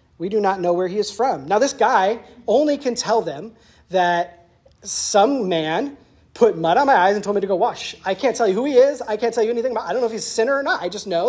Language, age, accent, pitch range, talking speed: English, 40-59, American, 170-220 Hz, 285 wpm